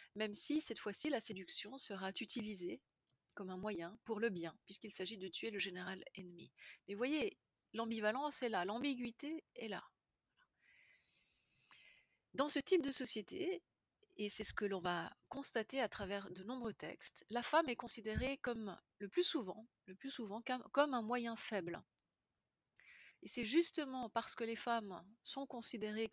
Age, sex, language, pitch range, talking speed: 30-49, female, French, 200-270 Hz, 160 wpm